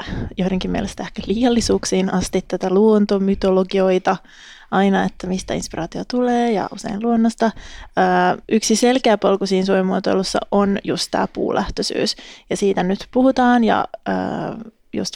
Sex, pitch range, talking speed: female, 190-220 Hz, 125 wpm